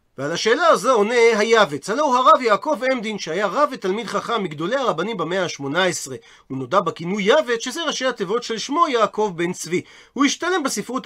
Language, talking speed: Hebrew, 180 wpm